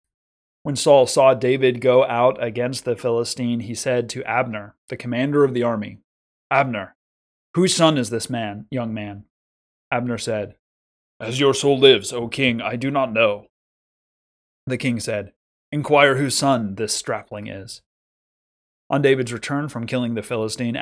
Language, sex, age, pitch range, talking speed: English, male, 30-49, 110-135 Hz, 155 wpm